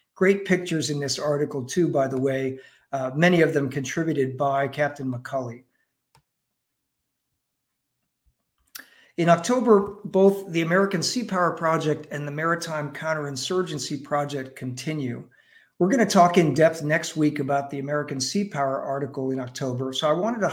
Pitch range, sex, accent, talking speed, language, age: 140-175 Hz, male, American, 150 wpm, English, 50-69